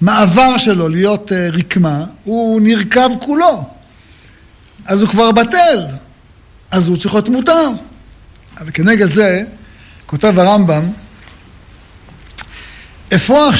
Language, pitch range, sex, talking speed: Hebrew, 135-220 Hz, male, 100 wpm